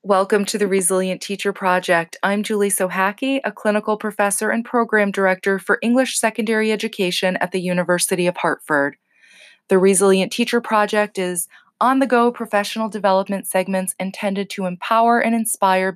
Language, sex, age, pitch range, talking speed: English, female, 20-39, 180-215 Hz, 145 wpm